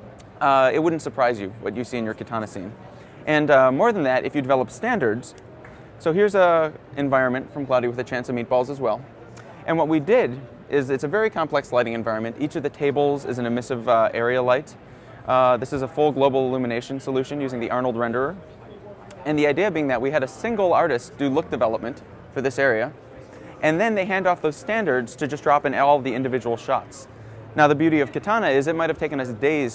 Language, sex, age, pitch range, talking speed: English, male, 20-39, 120-150 Hz, 225 wpm